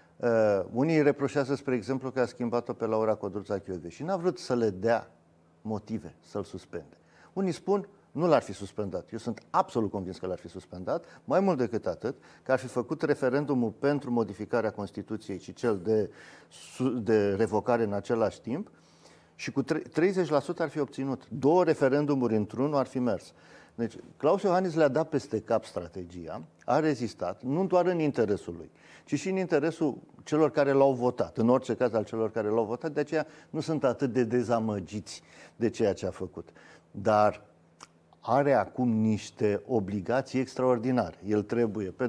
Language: Romanian